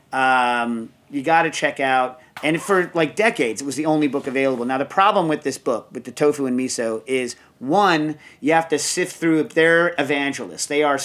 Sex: male